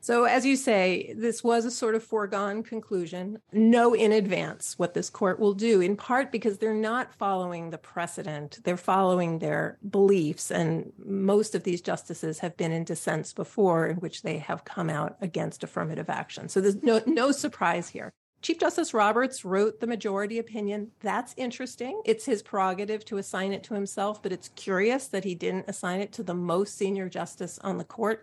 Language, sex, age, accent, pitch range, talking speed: English, female, 40-59, American, 180-225 Hz, 190 wpm